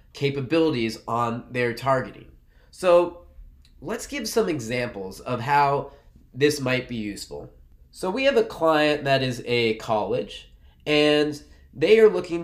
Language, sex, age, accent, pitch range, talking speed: English, male, 20-39, American, 110-150 Hz, 135 wpm